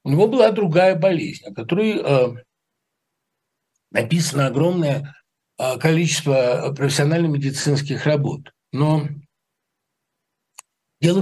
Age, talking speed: 60-79, 75 wpm